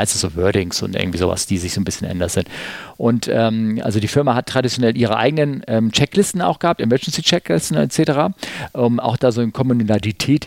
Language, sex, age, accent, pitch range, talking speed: German, male, 40-59, German, 110-130 Hz, 200 wpm